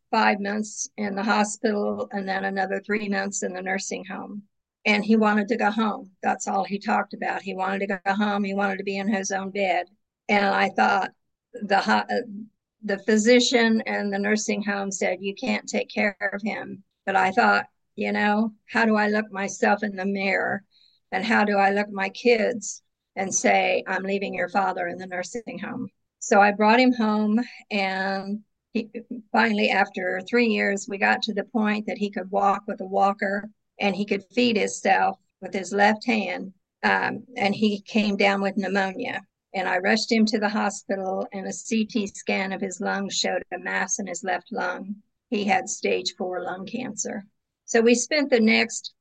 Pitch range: 195-215 Hz